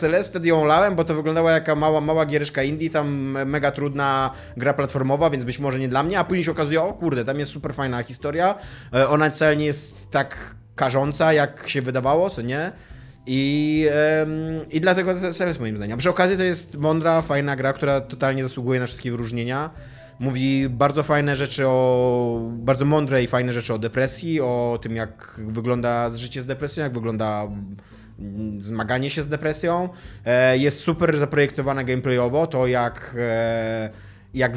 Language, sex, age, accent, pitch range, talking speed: Polish, male, 20-39, native, 125-155 Hz, 170 wpm